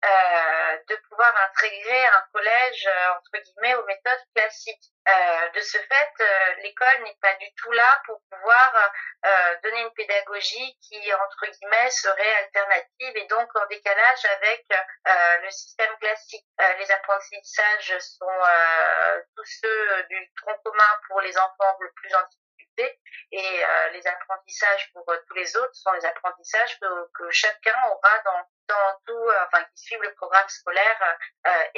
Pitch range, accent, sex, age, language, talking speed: 190-230 Hz, French, female, 40-59, French, 160 wpm